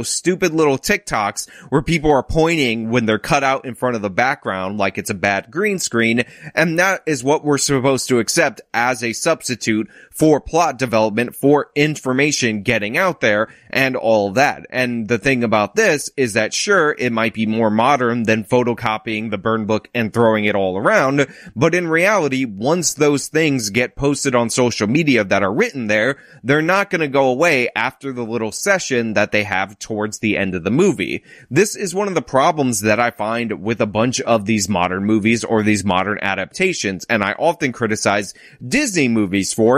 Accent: American